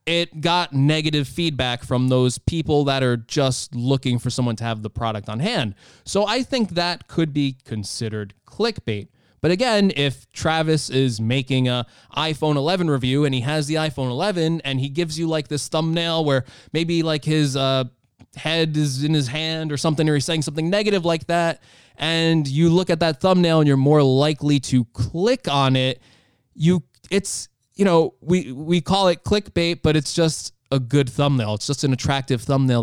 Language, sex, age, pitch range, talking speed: English, male, 20-39, 125-160 Hz, 190 wpm